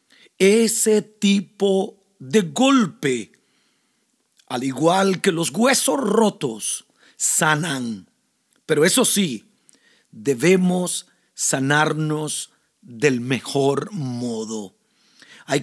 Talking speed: 75 wpm